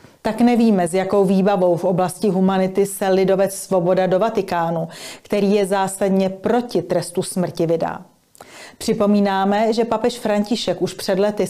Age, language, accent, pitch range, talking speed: 30-49, Czech, native, 180-205 Hz, 140 wpm